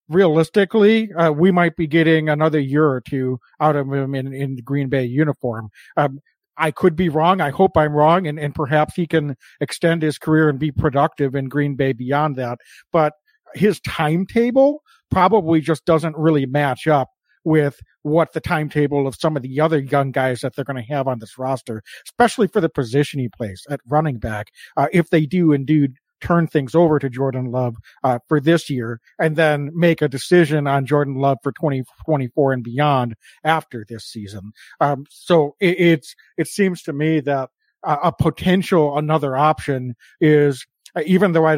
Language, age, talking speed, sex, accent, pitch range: English, 50-69, 185 wpm, male, American, 135-165 Hz